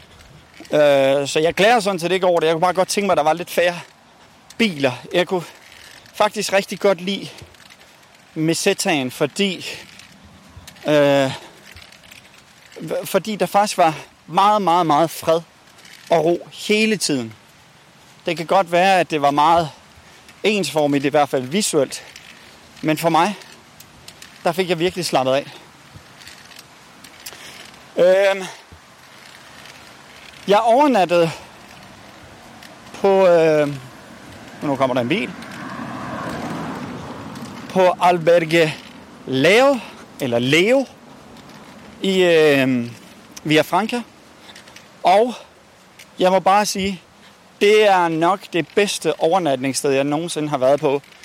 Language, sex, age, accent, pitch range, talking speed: Danish, male, 30-49, native, 150-195 Hz, 115 wpm